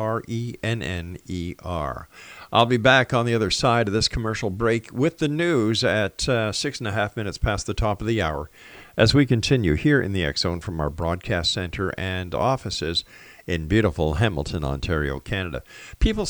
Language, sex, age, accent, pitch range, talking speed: English, male, 50-69, American, 85-125 Hz, 175 wpm